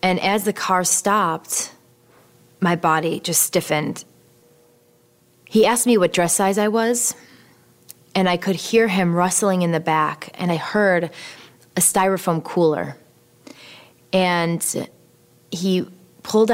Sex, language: female, English